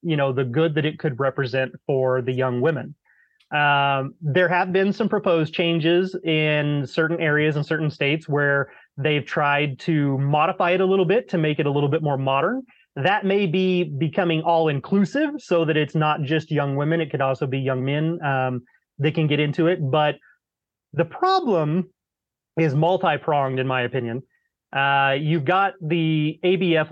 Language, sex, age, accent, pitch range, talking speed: English, male, 30-49, American, 140-175 Hz, 180 wpm